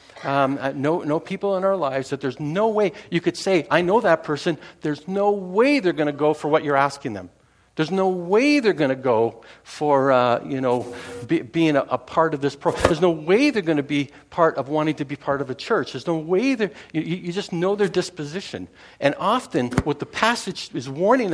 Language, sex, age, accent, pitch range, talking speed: English, male, 60-79, American, 125-180 Hz, 230 wpm